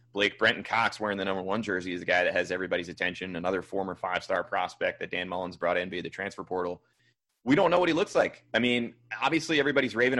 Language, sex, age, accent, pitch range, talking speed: English, male, 30-49, American, 90-110 Hz, 235 wpm